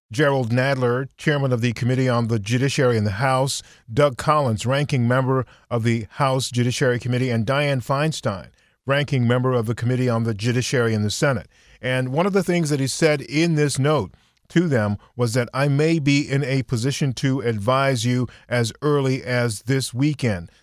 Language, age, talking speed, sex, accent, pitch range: English, 40-59, 185 wpm, male, American, 120-145 Hz